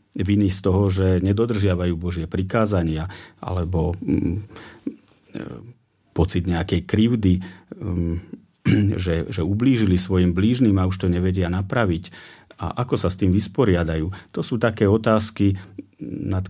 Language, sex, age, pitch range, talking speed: Slovak, male, 40-59, 90-110 Hz, 115 wpm